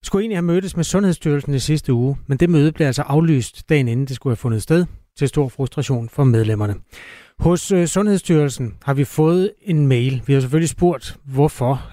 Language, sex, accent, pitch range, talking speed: Danish, male, native, 125-165 Hz, 195 wpm